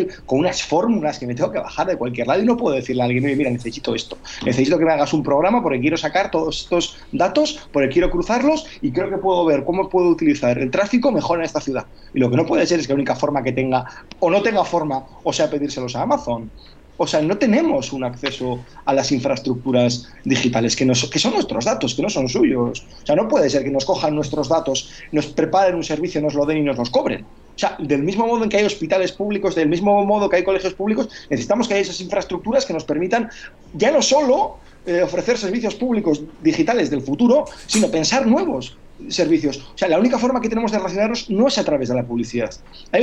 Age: 30-49